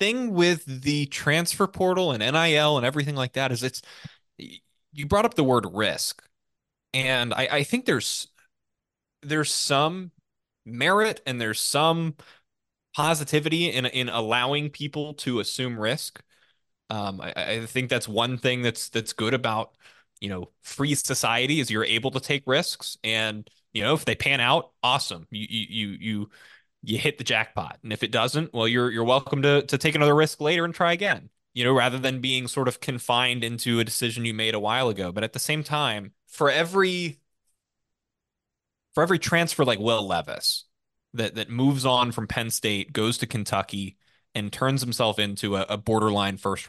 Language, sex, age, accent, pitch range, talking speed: English, male, 20-39, American, 110-145 Hz, 180 wpm